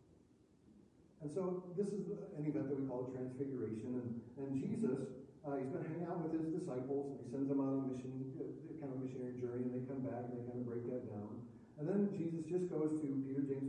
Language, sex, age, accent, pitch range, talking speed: English, male, 50-69, American, 130-150 Hz, 225 wpm